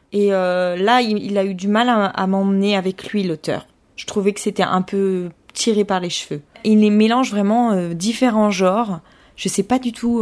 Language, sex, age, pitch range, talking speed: French, female, 20-39, 185-225 Hz, 230 wpm